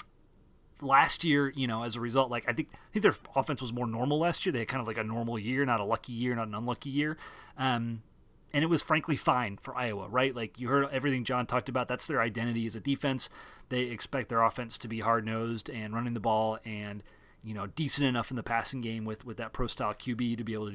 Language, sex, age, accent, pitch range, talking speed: English, male, 30-49, American, 115-140 Hz, 250 wpm